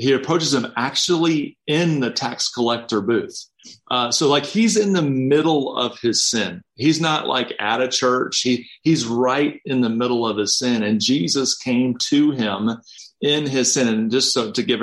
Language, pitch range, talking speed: English, 105-130 Hz, 190 wpm